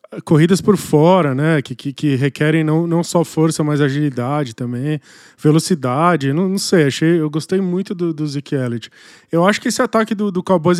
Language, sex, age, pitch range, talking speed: Portuguese, male, 20-39, 150-195 Hz, 190 wpm